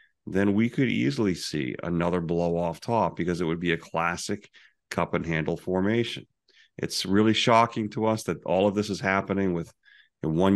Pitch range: 85-105 Hz